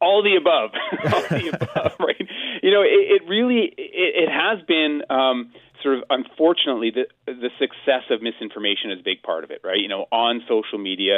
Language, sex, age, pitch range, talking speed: English, male, 30-49, 110-155 Hz, 210 wpm